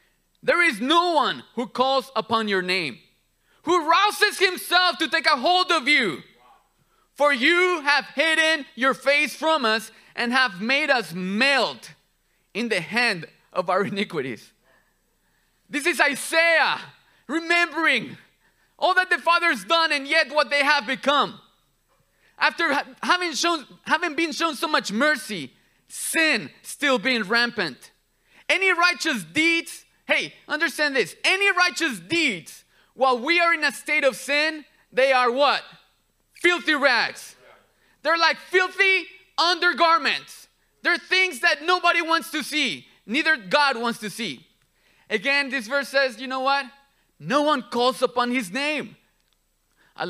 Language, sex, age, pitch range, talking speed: English, male, 30-49, 255-335 Hz, 140 wpm